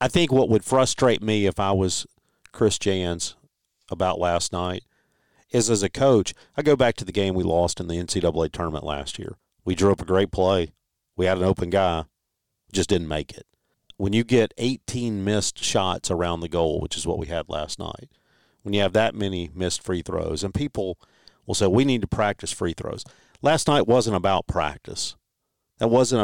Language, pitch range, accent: English, 90-115 Hz, American